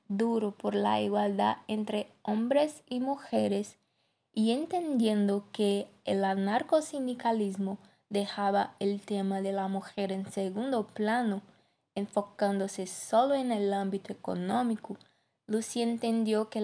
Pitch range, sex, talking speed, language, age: 205-250 Hz, female, 110 wpm, Spanish, 20-39